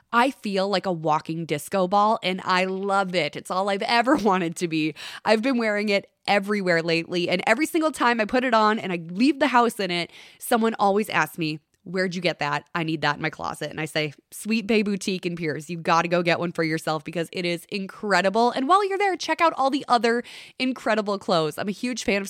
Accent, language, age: American, English, 20-39